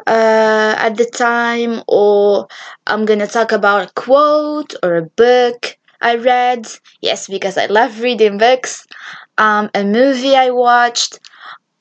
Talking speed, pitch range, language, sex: 135 wpm, 220-275 Hz, English, female